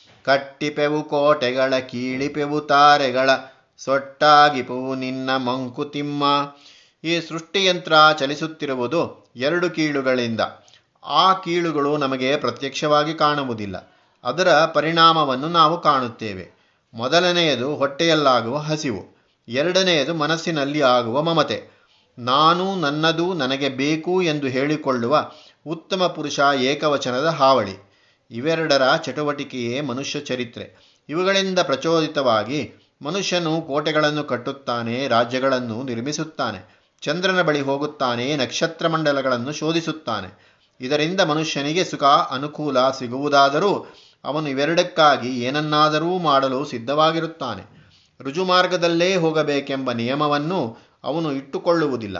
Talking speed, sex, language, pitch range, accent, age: 80 wpm, male, Kannada, 130-160 Hz, native, 30-49